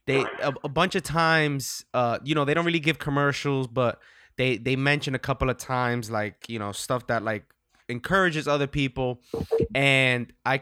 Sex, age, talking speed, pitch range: male, 20-39, 180 wpm, 120-155 Hz